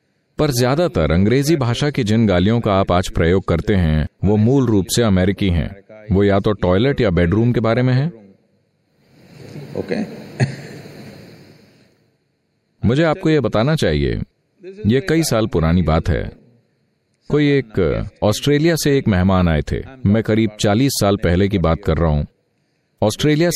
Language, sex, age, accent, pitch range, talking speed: Hindi, male, 40-59, native, 95-130 Hz, 150 wpm